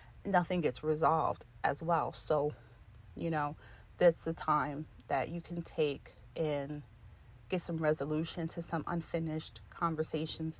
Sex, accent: female, American